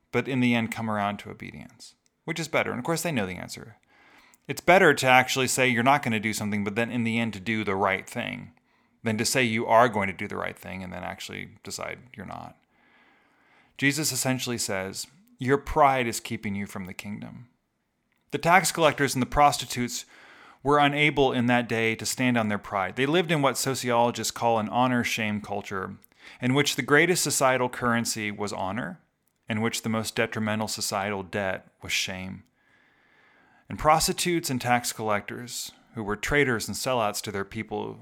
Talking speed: 195 wpm